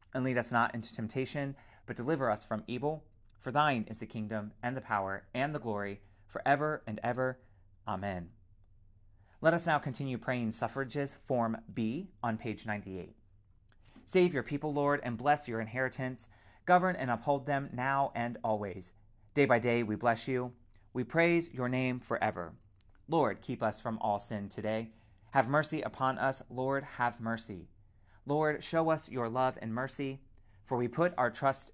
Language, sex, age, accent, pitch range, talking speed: English, male, 30-49, American, 105-135 Hz, 170 wpm